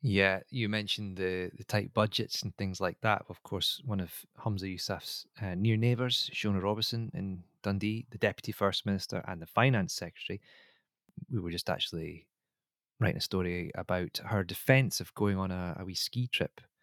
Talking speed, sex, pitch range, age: 180 wpm, male, 90-110 Hz, 20-39